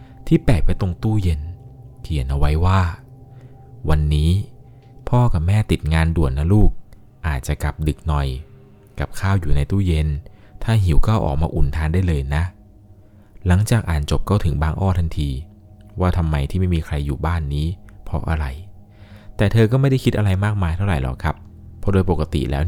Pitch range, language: 75-105 Hz, Thai